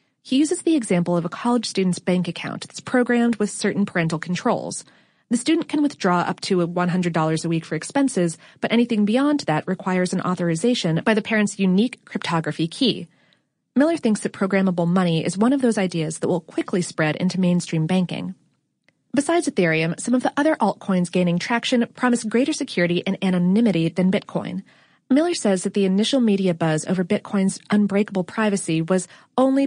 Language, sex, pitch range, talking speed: English, female, 175-235 Hz, 175 wpm